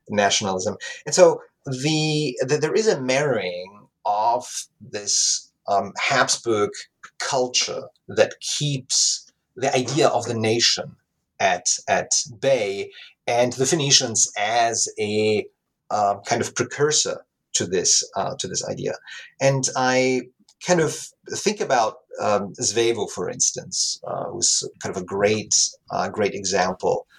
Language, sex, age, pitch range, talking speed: English, male, 30-49, 105-160 Hz, 130 wpm